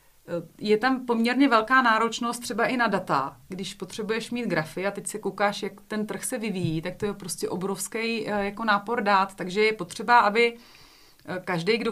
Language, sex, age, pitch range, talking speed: Czech, female, 30-49, 180-215 Hz, 180 wpm